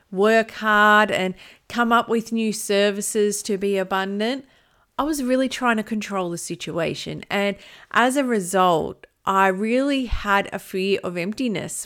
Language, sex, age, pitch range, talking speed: English, female, 40-59, 185-230 Hz, 150 wpm